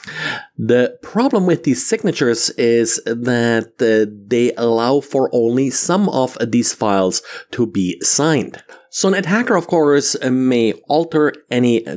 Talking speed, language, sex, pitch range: 135 wpm, English, male, 105-130 Hz